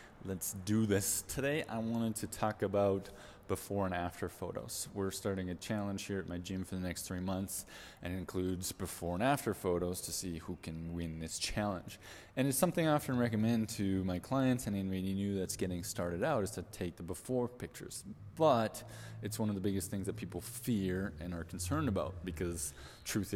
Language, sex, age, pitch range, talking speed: English, male, 20-39, 90-110 Hz, 200 wpm